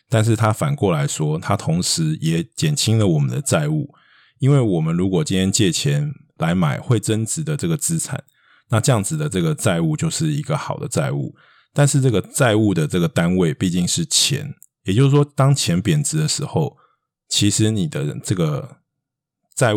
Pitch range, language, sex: 110-155 Hz, Chinese, male